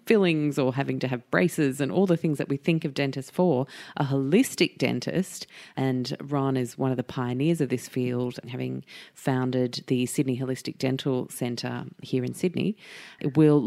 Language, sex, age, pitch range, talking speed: English, female, 30-49, 130-155 Hz, 180 wpm